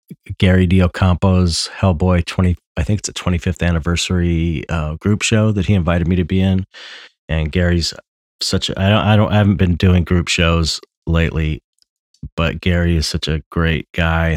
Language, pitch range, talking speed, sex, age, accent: English, 75-90 Hz, 165 wpm, male, 30-49, American